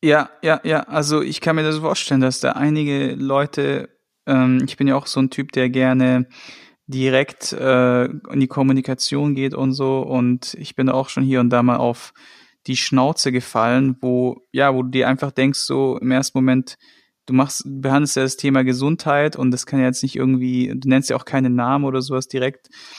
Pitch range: 125-140 Hz